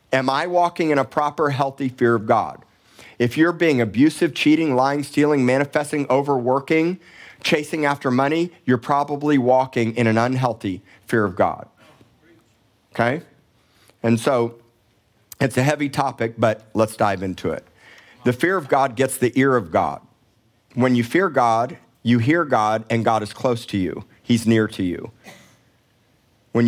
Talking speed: 155 wpm